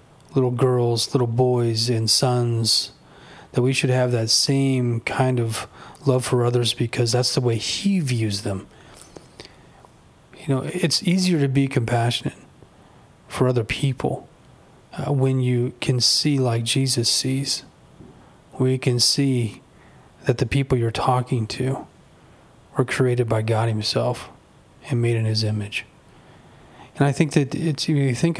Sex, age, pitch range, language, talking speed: male, 30-49, 115-135 Hz, English, 150 wpm